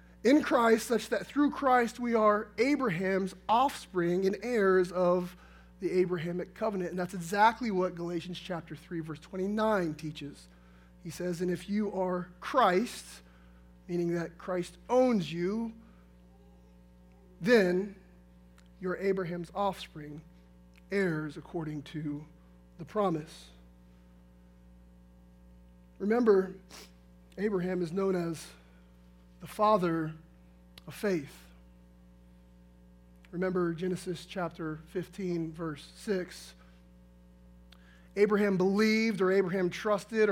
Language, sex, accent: English, male, American